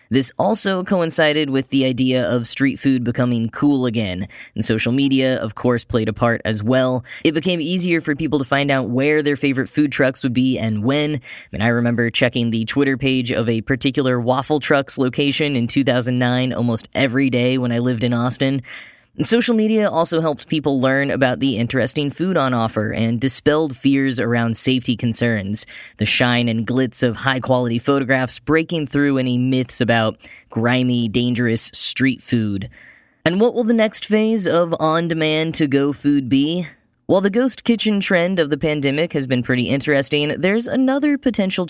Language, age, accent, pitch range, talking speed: English, 10-29, American, 125-155 Hz, 175 wpm